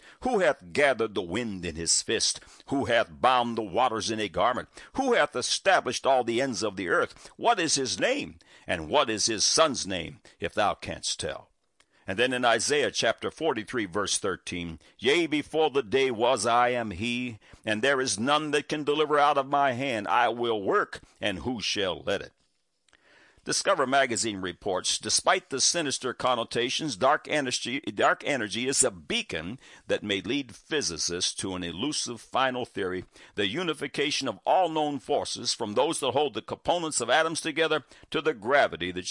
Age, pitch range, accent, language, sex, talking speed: 60-79, 100-145 Hz, American, English, male, 175 wpm